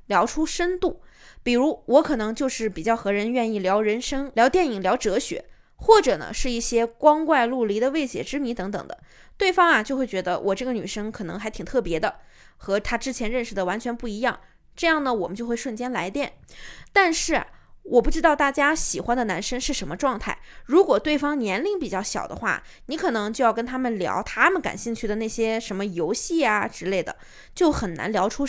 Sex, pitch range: female, 215-300 Hz